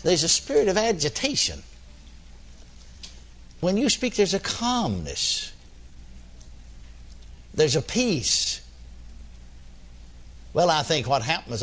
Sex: male